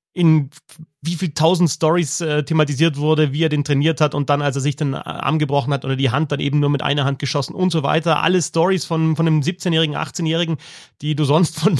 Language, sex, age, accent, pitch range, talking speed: German, male, 30-49, German, 145-190 Hz, 235 wpm